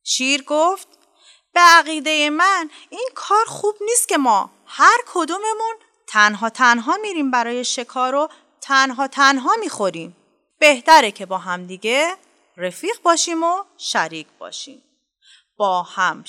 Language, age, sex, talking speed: Persian, 30-49, female, 120 wpm